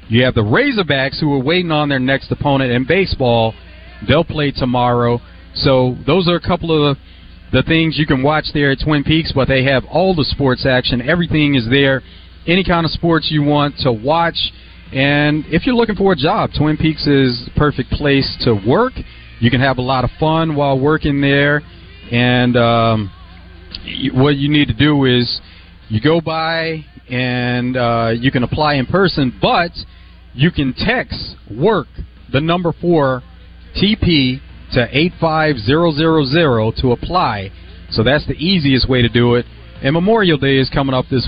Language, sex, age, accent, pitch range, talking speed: English, male, 40-59, American, 115-155 Hz, 175 wpm